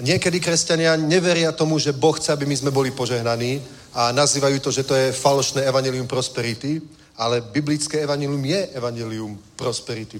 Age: 40-59